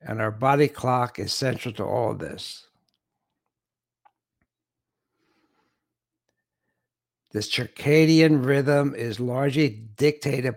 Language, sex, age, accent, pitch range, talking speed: English, male, 60-79, American, 130-160 Hz, 90 wpm